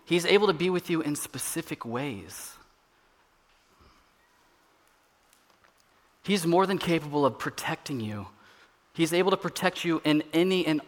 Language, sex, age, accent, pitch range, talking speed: English, male, 30-49, American, 115-155 Hz, 130 wpm